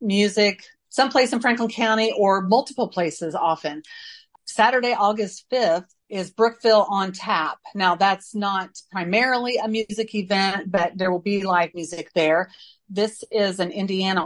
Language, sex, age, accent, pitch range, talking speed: English, female, 40-59, American, 180-215 Hz, 145 wpm